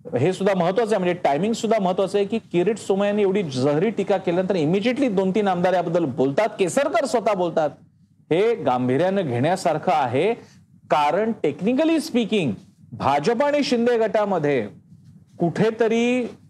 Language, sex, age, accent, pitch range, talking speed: Marathi, male, 40-59, native, 180-230 Hz, 135 wpm